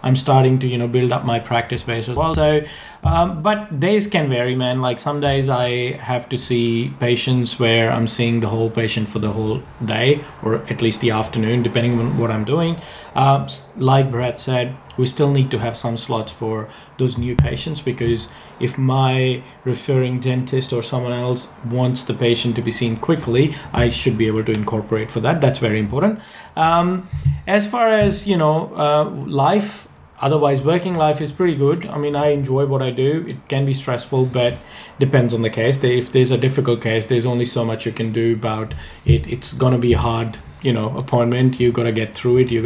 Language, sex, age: English, male, 30-49